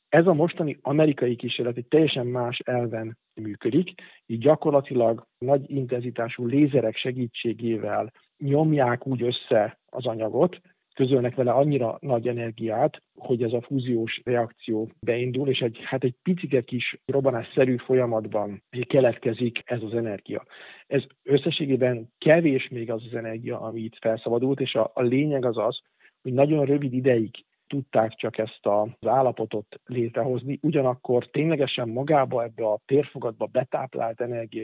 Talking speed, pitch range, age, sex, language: 135 wpm, 115-135 Hz, 50-69, male, Hungarian